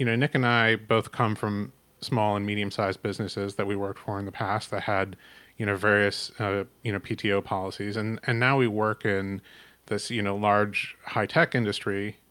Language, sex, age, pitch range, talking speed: English, male, 30-49, 100-120 Hz, 200 wpm